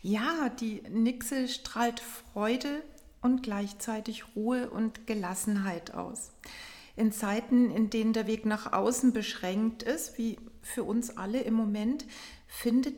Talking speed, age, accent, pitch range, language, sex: 130 wpm, 40-59, German, 220-245 Hz, German, female